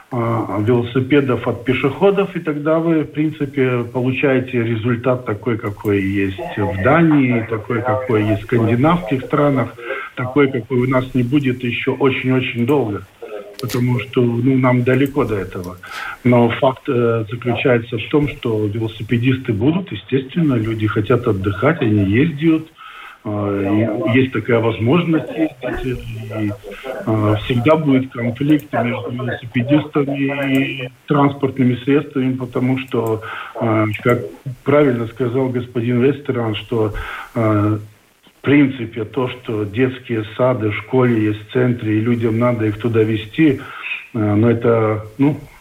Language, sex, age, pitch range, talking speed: Russian, male, 50-69, 110-135 Hz, 120 wpm